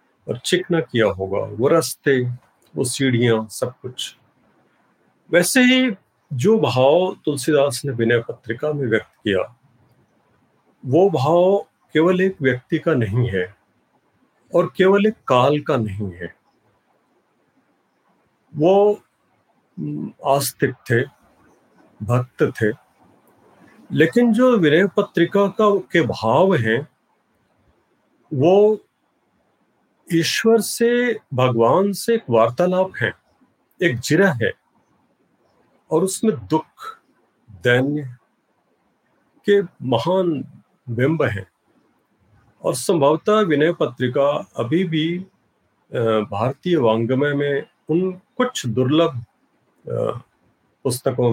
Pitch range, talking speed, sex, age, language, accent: 120-185 Hz, 95 wpm, male, 50-69, Hindi, native